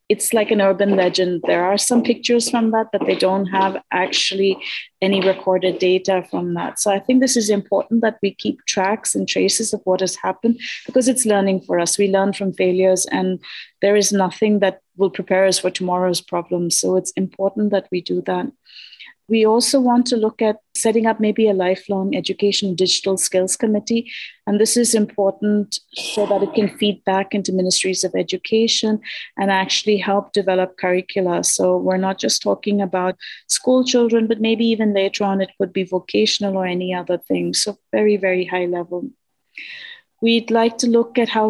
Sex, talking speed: female, 190 wpm